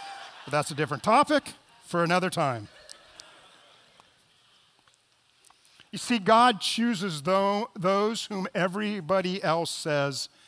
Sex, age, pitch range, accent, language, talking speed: male, 40-59, 170-250 Hz, American, English, 105 wpm